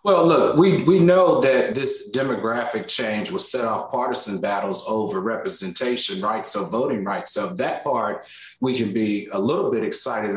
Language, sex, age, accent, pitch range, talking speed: English, male, 40-59, American, 115-170 Hz, 175 wpm